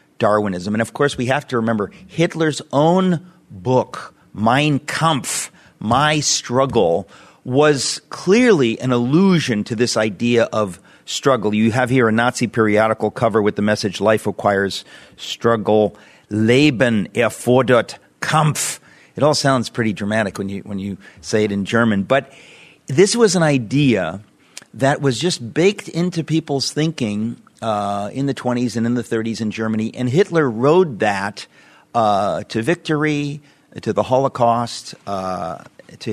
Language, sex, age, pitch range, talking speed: English, male, 40-59, 105-145 Hz, 145 wpm